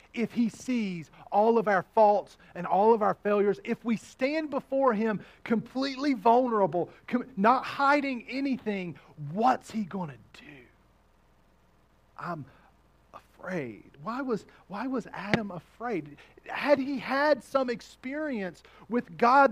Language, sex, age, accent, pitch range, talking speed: English, male, 40-59, American, 185-260 Hz, 125 wpm